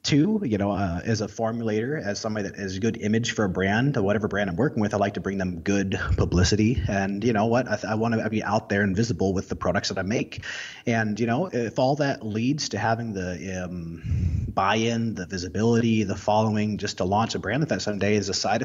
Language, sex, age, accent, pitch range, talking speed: English, male, 30-49, American, 100-120 Hz, 235 wpm